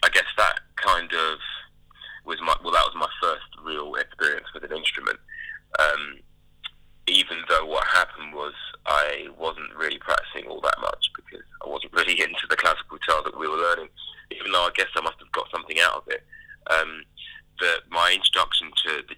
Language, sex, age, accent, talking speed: English, male, 20-39, British, 190 wpm